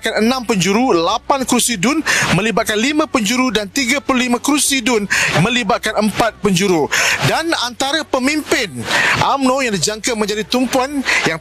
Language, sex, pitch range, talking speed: Malay, male, 200-240 Hz, 130 wpm